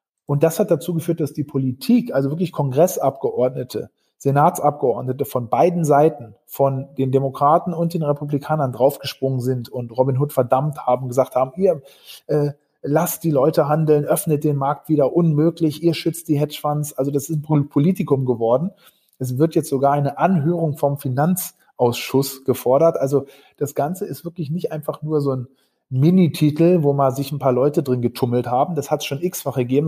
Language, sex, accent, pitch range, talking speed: German, male, German, 135-165 Hz, 175 wpm